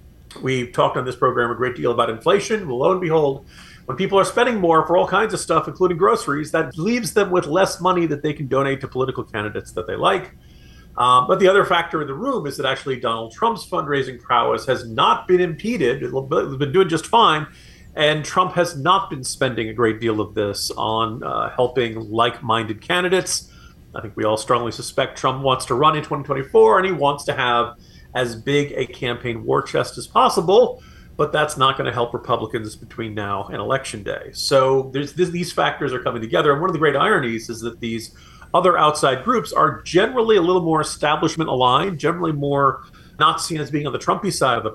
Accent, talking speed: American, 210 wpm